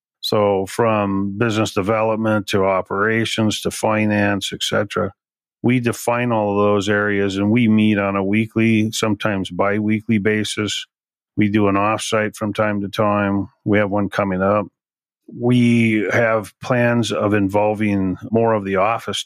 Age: 40-59